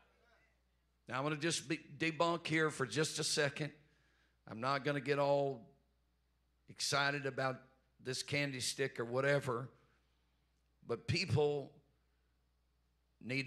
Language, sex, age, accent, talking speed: English, male, 50-69, American, 120 wpm